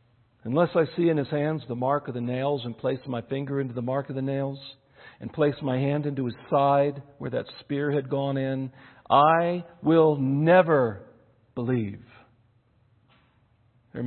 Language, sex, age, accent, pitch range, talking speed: English, male, 50-69, American, 120-150 Hz, 165 wpm